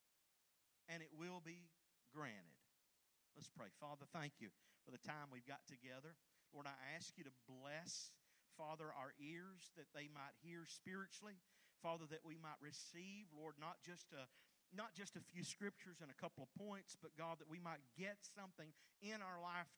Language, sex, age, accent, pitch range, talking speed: English, male, 50-69, American, 150-195 Hz, 175 wpm